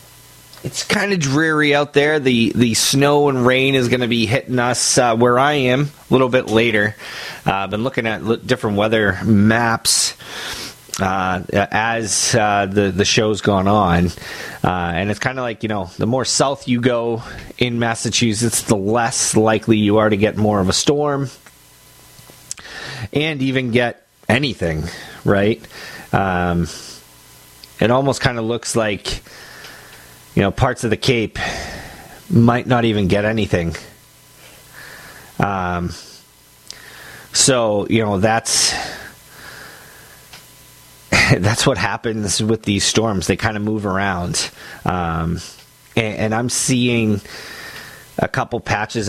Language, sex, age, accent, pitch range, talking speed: English, male, 30-49, American, 100-125 Hz, 140 wpm